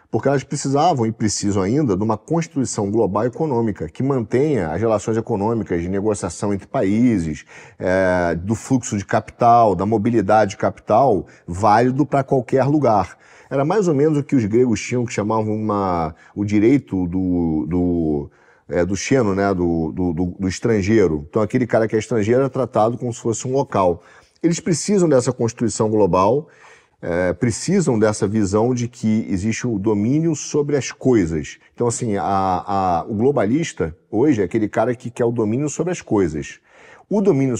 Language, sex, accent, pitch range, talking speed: Portuguese, male, Brazilian, 100-135 Hz, 165 wpm